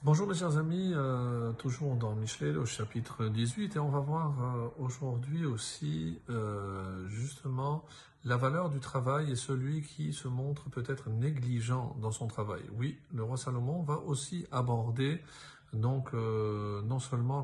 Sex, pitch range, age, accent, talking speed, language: male, 115-145 Hz, 50-69, French, 155 wpm, French